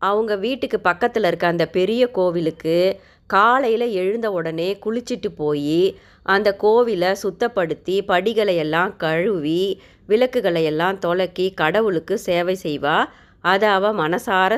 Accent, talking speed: native, 105 wpm